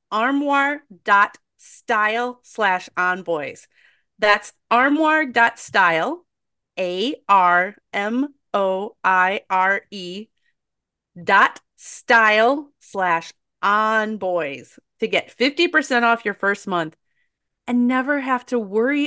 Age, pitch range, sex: 30-49, 170-245 Hz, female